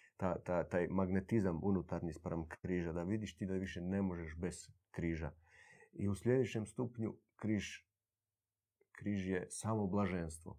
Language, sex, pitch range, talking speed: Croatian, male, 100-115 Hz, 130 wpm